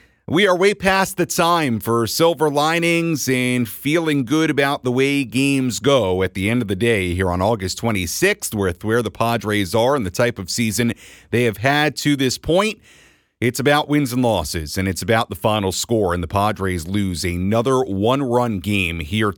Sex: male